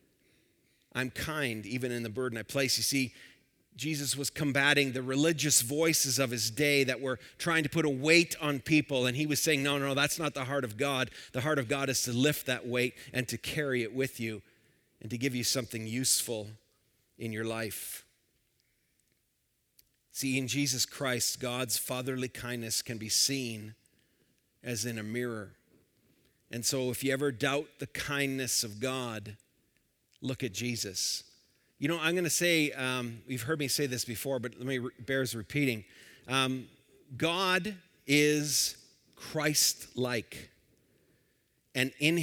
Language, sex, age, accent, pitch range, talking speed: English, male, 40-59, American, 120-155 Hz, 165 wpm